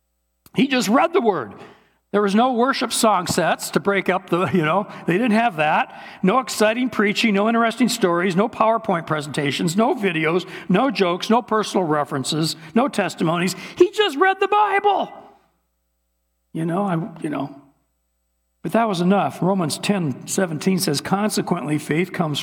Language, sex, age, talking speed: English, male, 60-79, 160 wpm